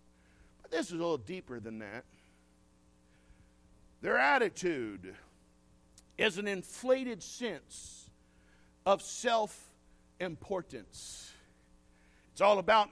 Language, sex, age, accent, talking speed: English, male, 50-69, American, 85 wpm